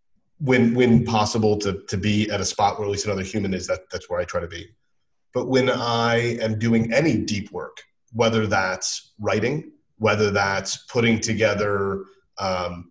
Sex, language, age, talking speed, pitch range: male, English, 30-49, 175 wpm, 95-115 Hz